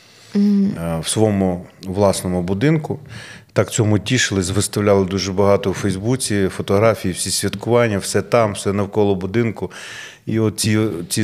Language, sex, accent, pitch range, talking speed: Ukrainian, male, native, 95-115 Hz, 125 wpm